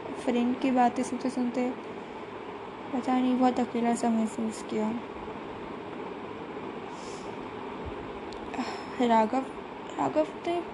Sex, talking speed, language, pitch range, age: female, 80 wpm, Hindi, 220-285 Hz, 10-29